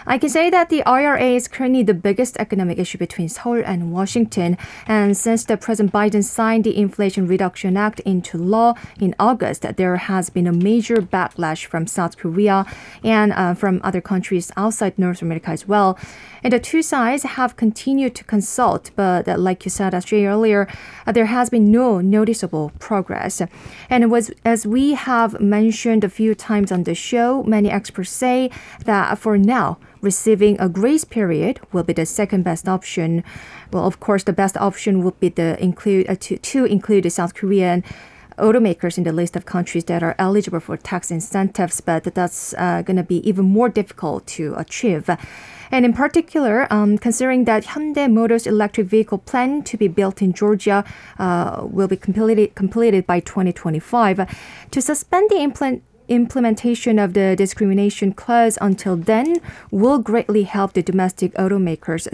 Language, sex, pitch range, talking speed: English, female, 185-230 Hz, 165 wpm